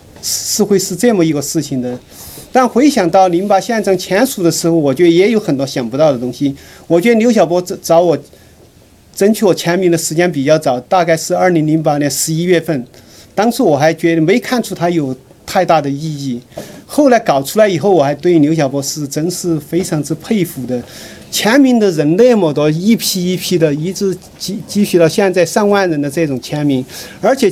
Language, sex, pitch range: Chinese, male, 155-205 Hz